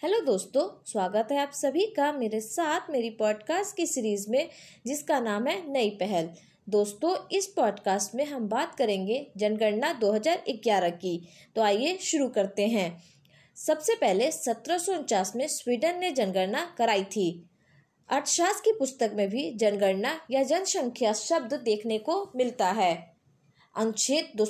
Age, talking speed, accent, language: 20-39, 140 wpm, native, Hindi